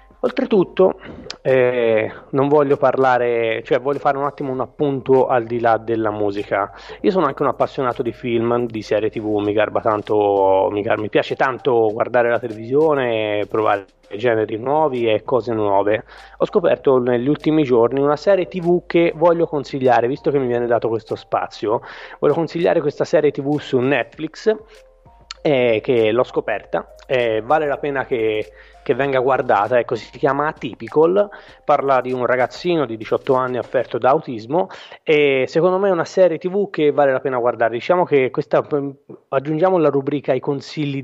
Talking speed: 165 wpm